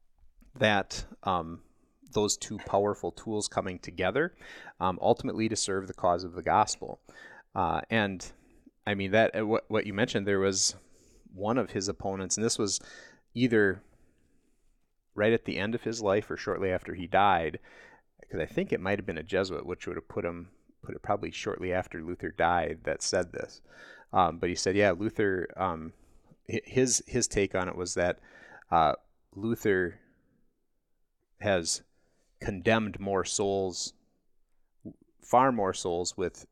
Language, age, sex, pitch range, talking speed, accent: English, 30-49, male, 90-110 Hz, 160 wpm, American